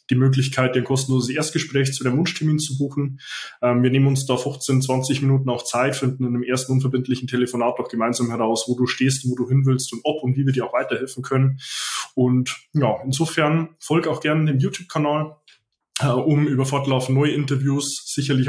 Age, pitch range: 20-39, 120-140 Hz